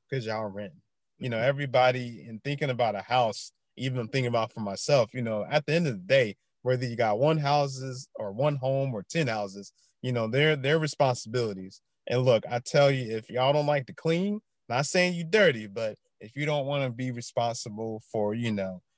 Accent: American